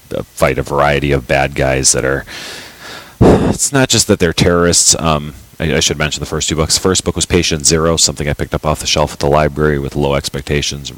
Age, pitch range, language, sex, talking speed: 30-49, 65-80 Hz, English, male, 220 wpm